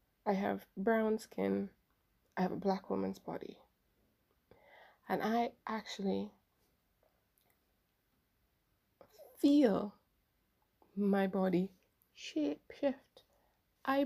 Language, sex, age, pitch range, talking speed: English, female, 20-39, 190-245 Hz, 80 wpm